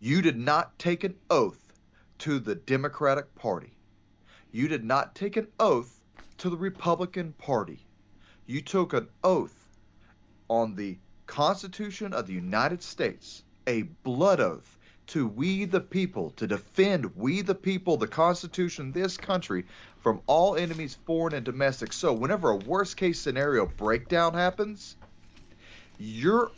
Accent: American